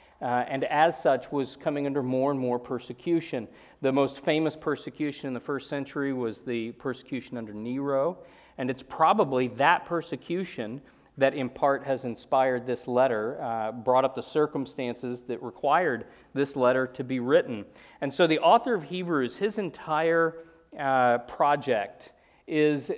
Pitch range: 125-155 Hz